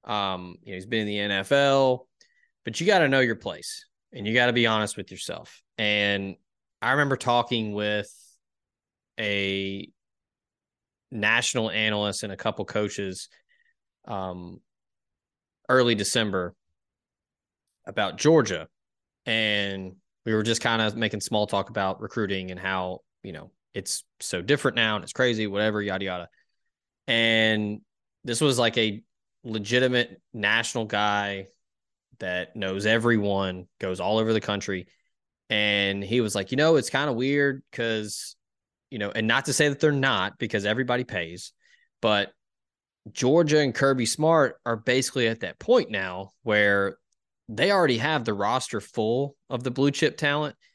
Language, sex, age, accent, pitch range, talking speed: English, male, 20-39, American, 100-125 Hz, 150 wpm